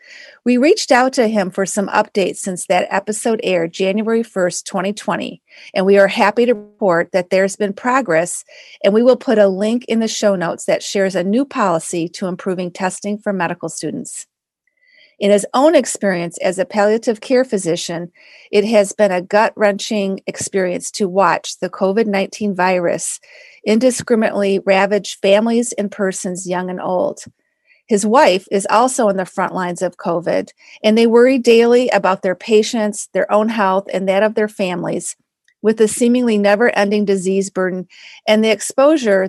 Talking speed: 165 wpm